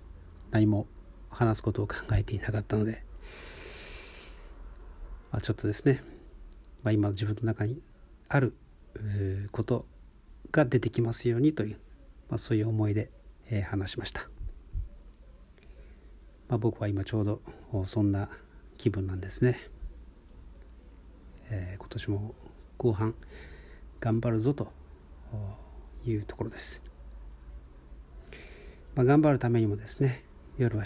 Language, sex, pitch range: Japanese, male, 70-110 Hz